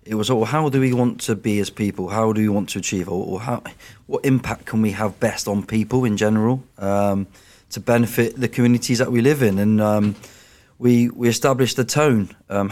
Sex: male